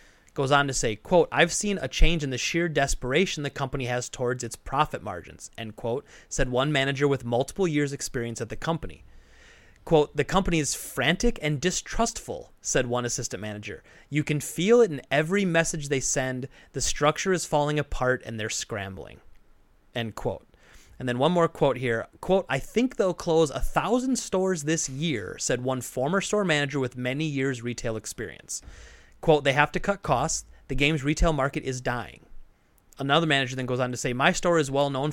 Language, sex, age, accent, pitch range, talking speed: English, male, 30-49, American, 125-165 Hz, 190 wpm